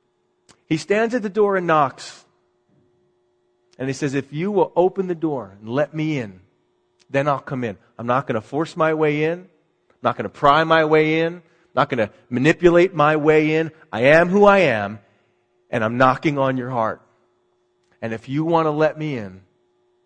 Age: 40-59